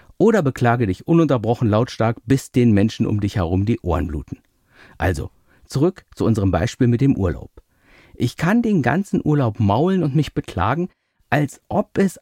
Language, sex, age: German, male, 50-69